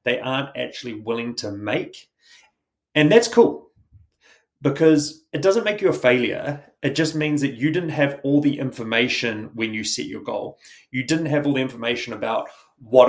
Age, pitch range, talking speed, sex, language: 30-49, 120-150 Hz, 180 wpm, male, English